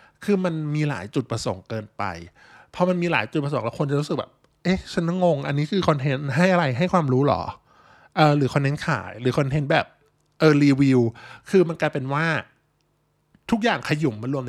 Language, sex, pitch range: Thai, male, 125-155 Hz